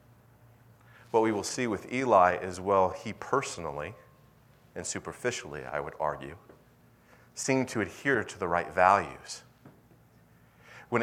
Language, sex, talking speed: English, male, 125 wpm